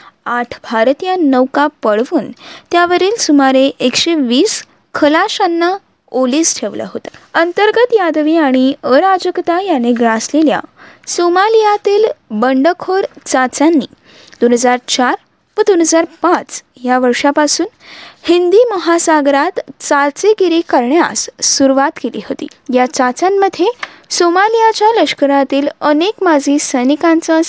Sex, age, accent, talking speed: female, 20-39, native, 85 wpm